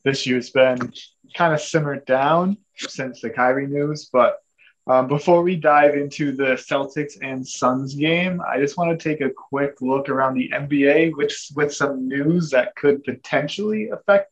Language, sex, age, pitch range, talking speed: English, male, 20-39, 125-155 Hz, 175 wpm